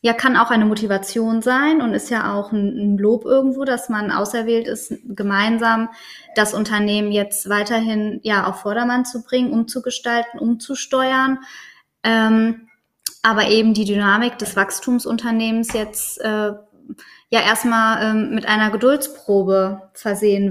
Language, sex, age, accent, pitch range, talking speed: German, female, 20-39, German, 200-230 Hz, 130 wpm